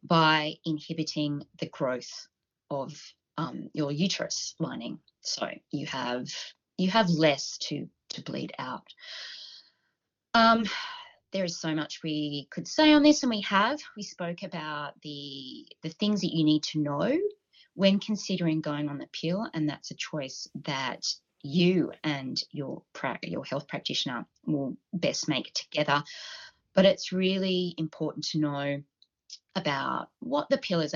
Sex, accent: female, Australian